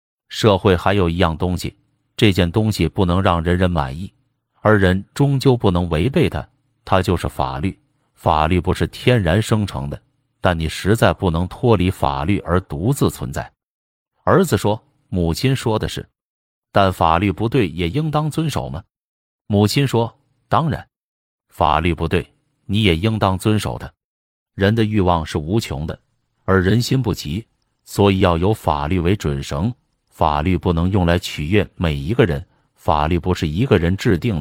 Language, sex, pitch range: Chinese, male, 85-110 Hz